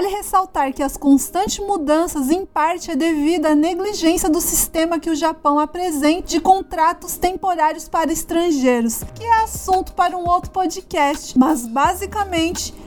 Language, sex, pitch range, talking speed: Portuguese, female, 295-345 Hz, 150 wpm